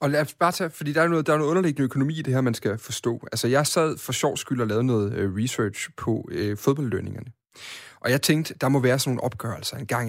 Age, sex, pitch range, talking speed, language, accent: 30-49, male, 115-150 Hz, 255 wpm, Danish, native